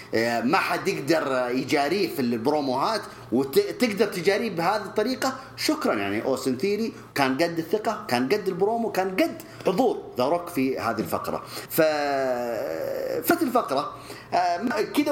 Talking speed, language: 115 wpm, English